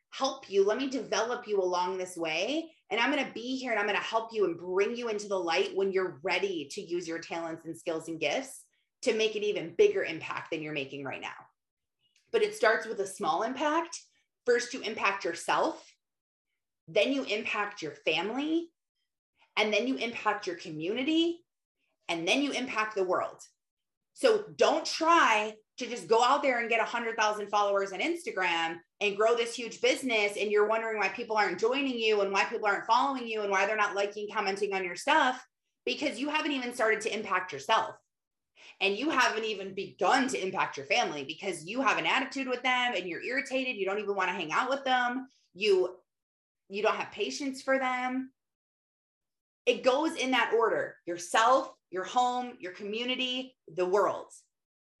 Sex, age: female, 30-49